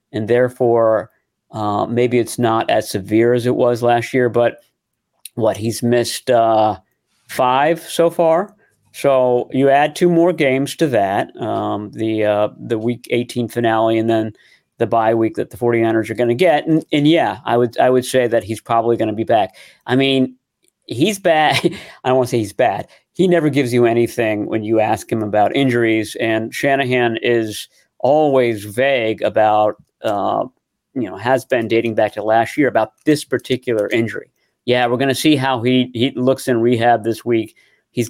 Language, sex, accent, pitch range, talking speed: English, male, American, 110-125 Hz, 185 wpm